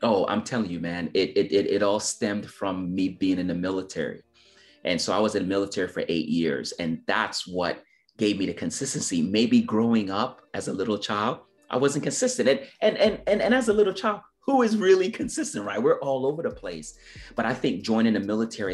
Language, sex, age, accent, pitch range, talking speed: English, male, 30-49, American, 90-110 Hz, 220 wpm